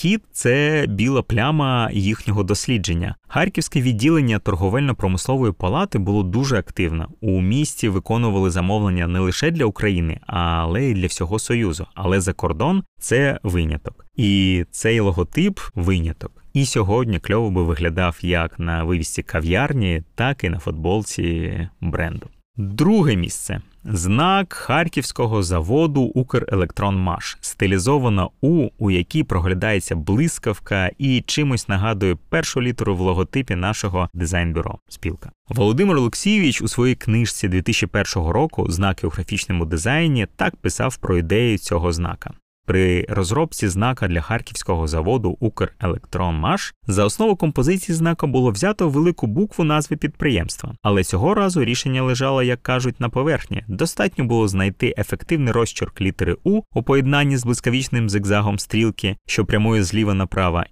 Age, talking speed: 20-39, 135 wpm